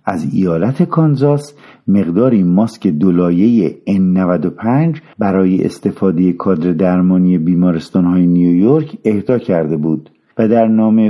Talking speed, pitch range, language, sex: 110 wpm, 95-135 Hz, Persian, male